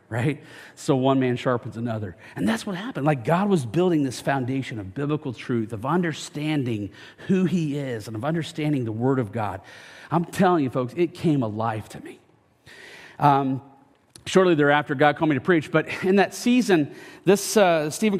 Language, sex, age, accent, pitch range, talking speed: English, male, 40-59, American, 130-180 Hz, 180 wpm